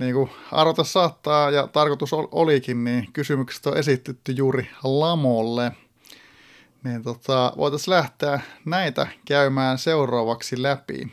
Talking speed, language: 110 wpm, Finnish